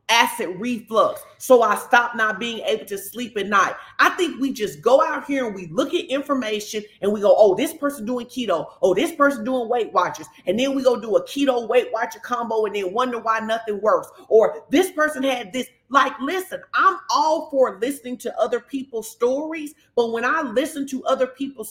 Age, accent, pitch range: 30-49, American, 215-280 Hz